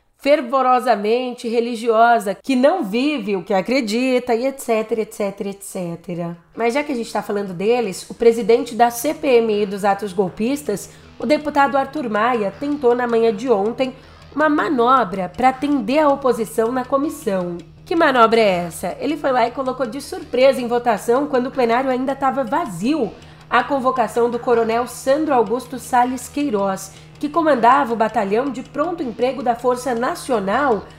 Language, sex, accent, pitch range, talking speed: Portuguese, female, Brazilian, 225-270 Hz, 155 wpm